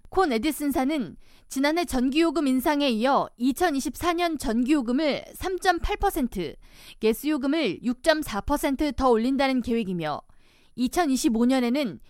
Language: Korean